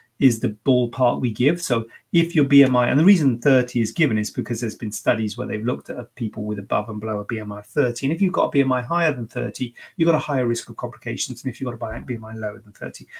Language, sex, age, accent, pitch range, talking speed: English, male, 30-49, British, 115-140 Hz, 265 wpm